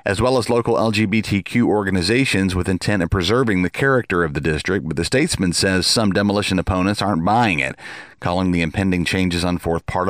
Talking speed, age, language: 190 wpm, 40-59, English